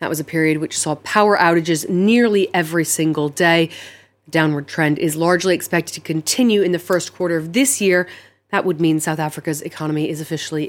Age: 30-49